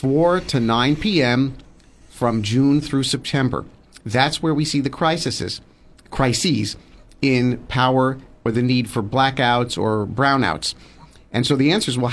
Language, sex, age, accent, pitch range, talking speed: English, male, 50-69, American, 120-150 Hz, 145 wpm